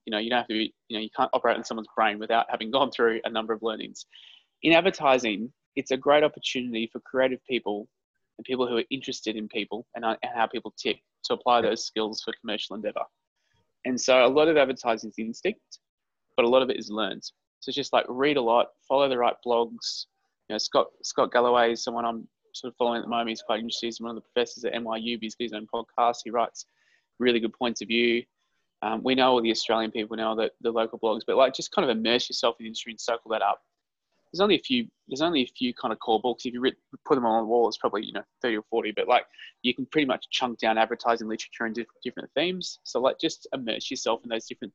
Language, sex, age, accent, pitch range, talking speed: English, male, 20-39, Australian, 115-130 Hz, 250 wpm